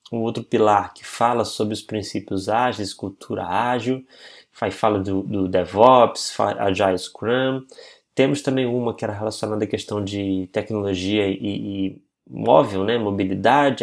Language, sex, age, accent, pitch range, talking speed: Portuguese, male, 20-39, Brazilian, 105-140 Hz, 145 wpm